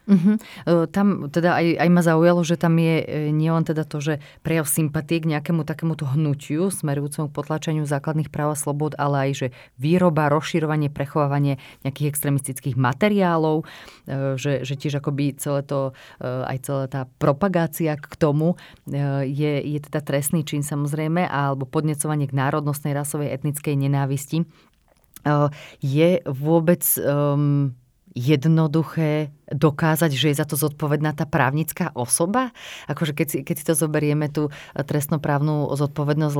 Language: Slovak